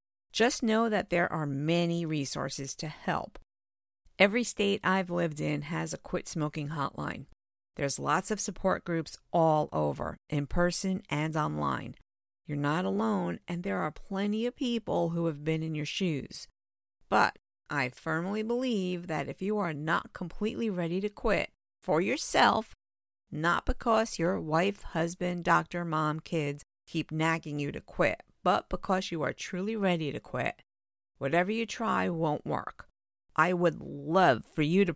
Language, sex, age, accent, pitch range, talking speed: English, female, 50-69, American, 145-195 Hz, 160 wpm